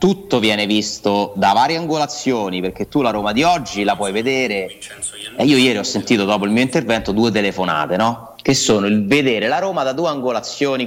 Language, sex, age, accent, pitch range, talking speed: Italian, male, 30-49, native, 95-140 Hz, 200 wpm